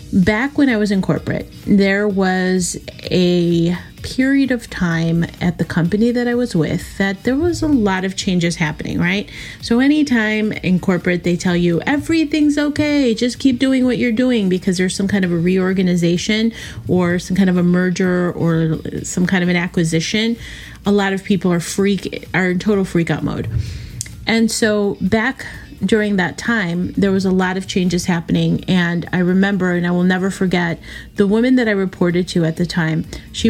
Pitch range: 175-215 Hz